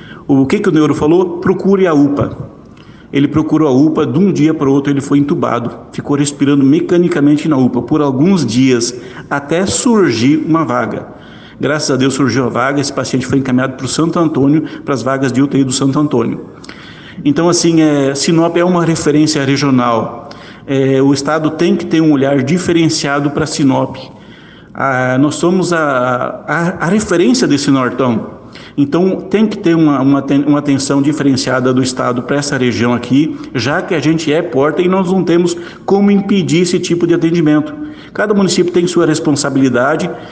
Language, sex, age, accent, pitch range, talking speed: Portuguese, male, 60-79, Brazilian, 140-175 Hz, 180 wpm